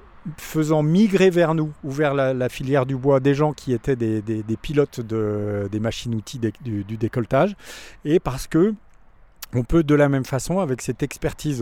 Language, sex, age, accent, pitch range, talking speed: French, male, 40-59, French, 125-160 Hz, 200 wpm